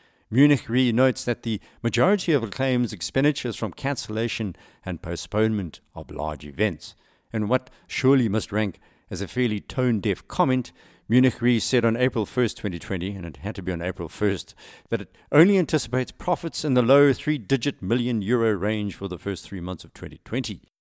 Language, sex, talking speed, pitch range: English, male, 175 wpm, 90-120 Hz